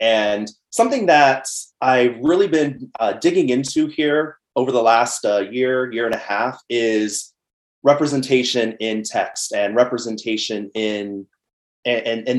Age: 30-49